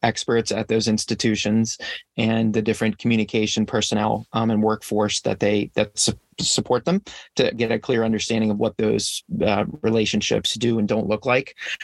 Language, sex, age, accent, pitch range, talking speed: English, male, 30-49, American, 105-120 Hz, 165 wpm